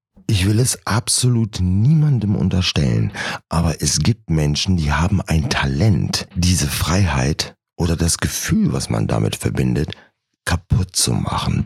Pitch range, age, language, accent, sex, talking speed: 80-110 Hz, 60-79, German, German, male, 135 wpm